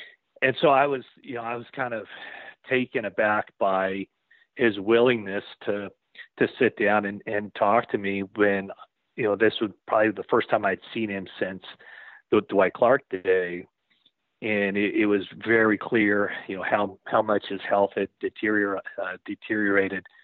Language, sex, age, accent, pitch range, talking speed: English, male, 40-59, American, 105-125 Hz, 170 wpm